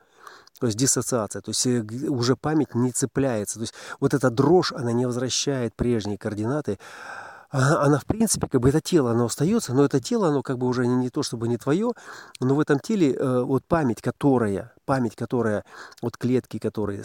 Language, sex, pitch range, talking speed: Russian, male, 115-140 Hz, 190 wpm